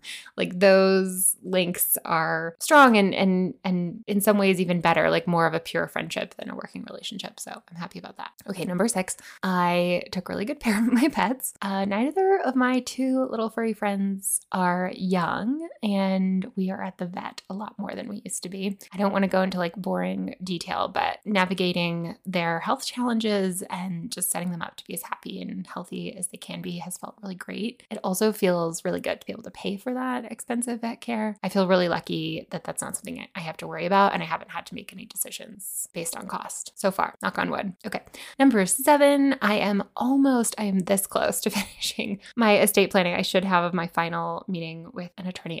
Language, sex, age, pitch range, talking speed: English, female, 10-29, 180-225 Hz, 215 wpm